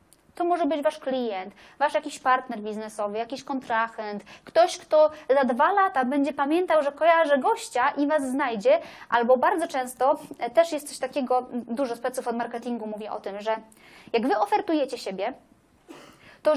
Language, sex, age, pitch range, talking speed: Polish, female, 20-39, 230-310 Hz, 160 wpm